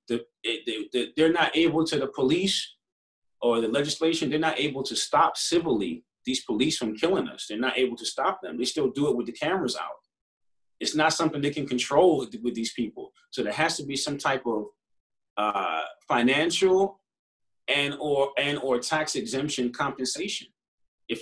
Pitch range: 130-180 Hz